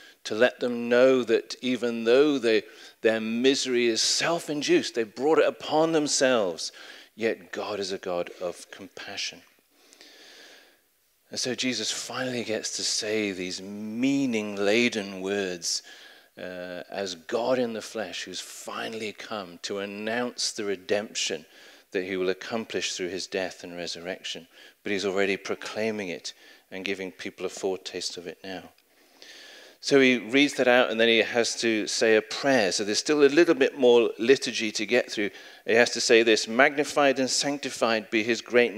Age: 40-59